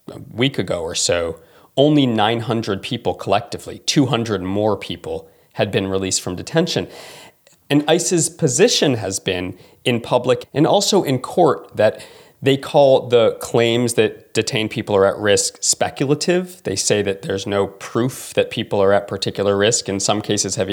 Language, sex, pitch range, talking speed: English, male, 105-160 Hz, 160 wpm